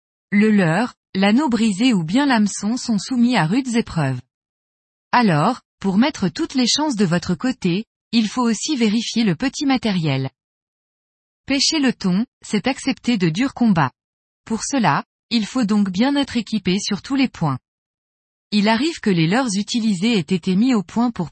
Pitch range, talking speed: 185-245 Hz, 170 wpm